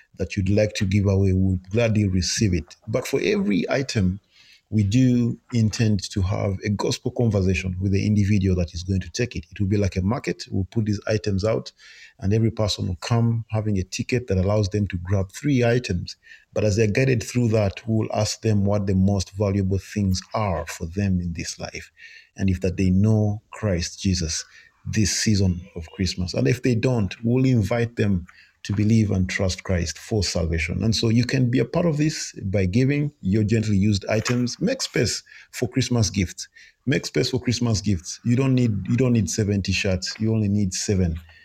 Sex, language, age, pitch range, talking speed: male, English, 40-59, 95-120 Hz, 205 wpm